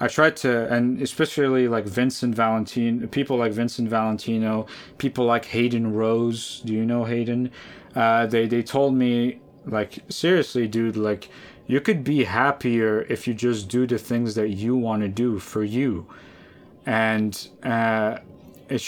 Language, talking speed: English, 155 wpm